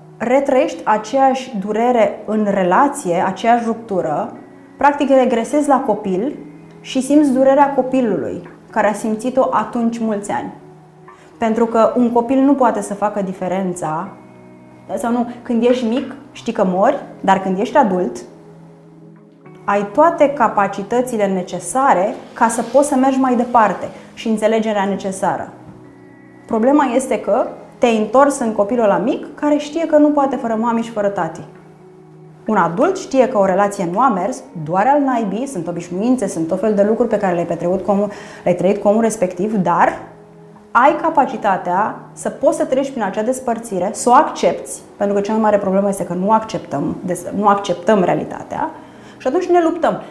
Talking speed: 160 wpm